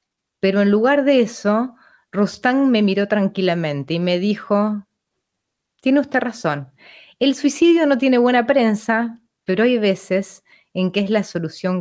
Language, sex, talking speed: Spanish, female, 145 wpm